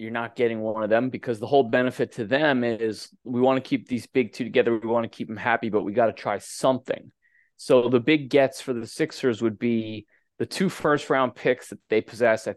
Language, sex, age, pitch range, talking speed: English, male, 20-39, 105-130 Hz, 245 wpm